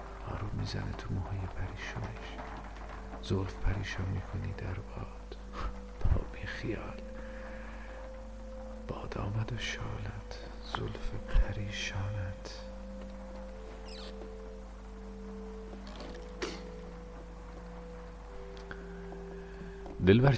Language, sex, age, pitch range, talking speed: Persian, male, 50-69, 85-105 Hz, 60 wpm